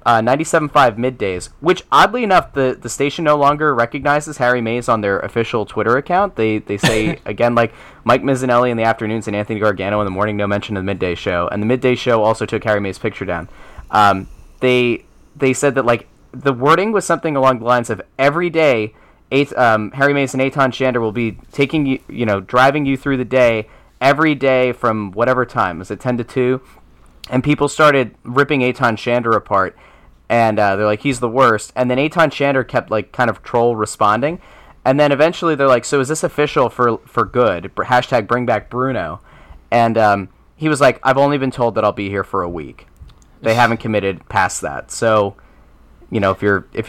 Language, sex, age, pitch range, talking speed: English, male, 20-39, 105-135 Hz, 210 wpm